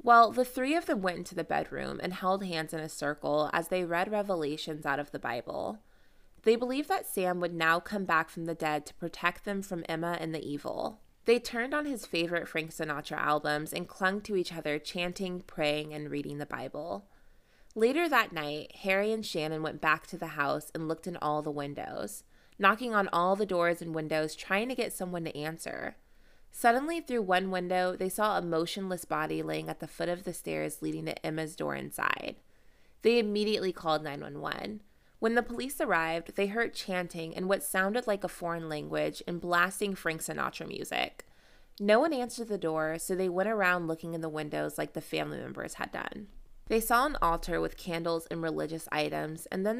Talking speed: 200 wpm